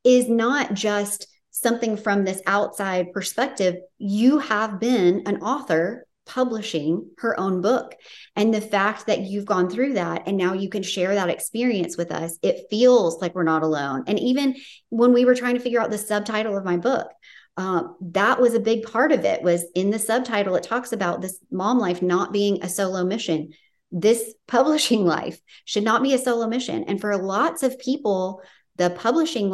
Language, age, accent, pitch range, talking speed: English, 40-59, American, 175-225 Hz, 190 wpm